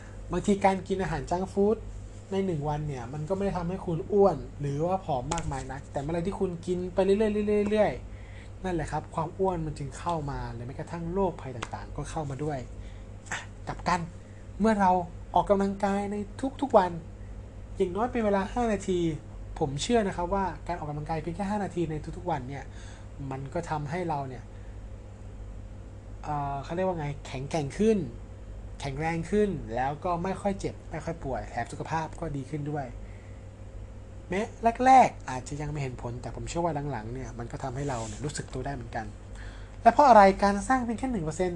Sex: male